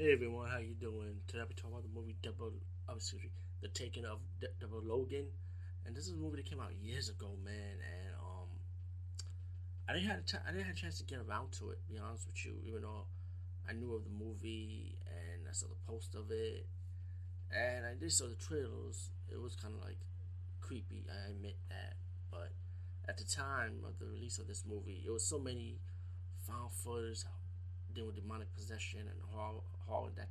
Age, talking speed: 20-39, 210 wpm